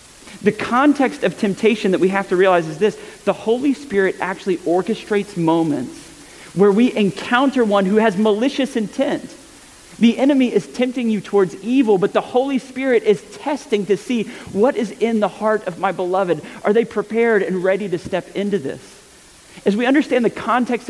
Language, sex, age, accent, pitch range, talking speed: English, male, 30-49, American, 190-235 Hz, 180 wpm